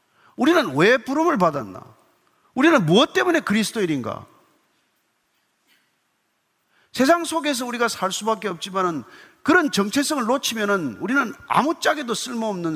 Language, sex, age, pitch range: Korean, male, 40-59, 185-270 Hz